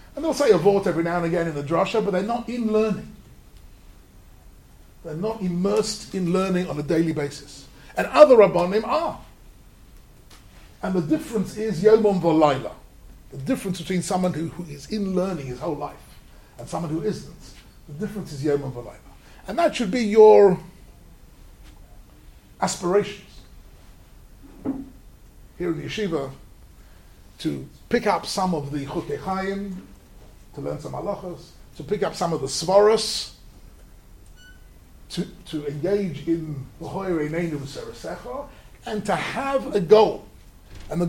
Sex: male